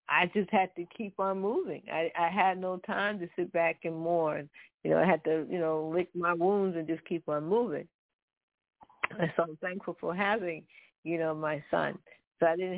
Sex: female